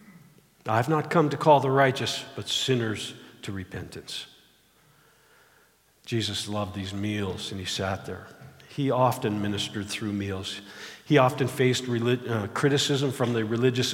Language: English